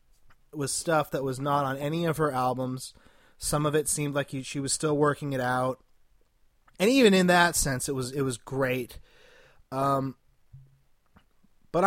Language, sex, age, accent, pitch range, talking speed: English, male, 30-49, American, 130-165 Hz, 165 wpm